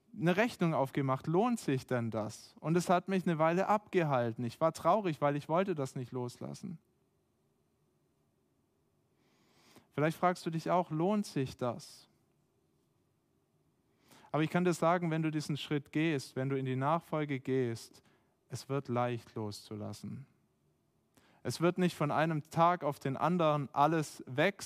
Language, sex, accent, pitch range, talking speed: German, male, German, 125-160 Hz, 150 wpm